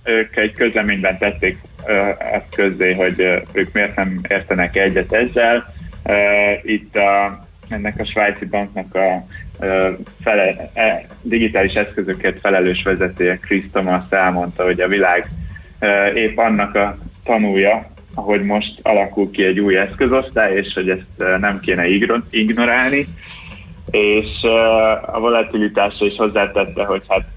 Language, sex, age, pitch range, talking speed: Hungarian, male, 20-39, 95-105 Hz, 140 wpm